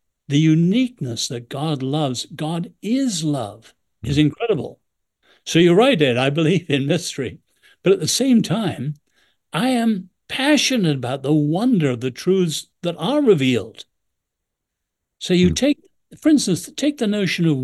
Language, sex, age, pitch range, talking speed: English, male, 60-79, 130-180 Hz, 150 wpm